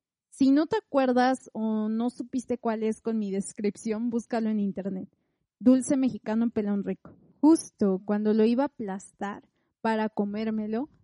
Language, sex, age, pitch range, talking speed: Spanish, female, 30-49, 210-255 Hz, 150 wpm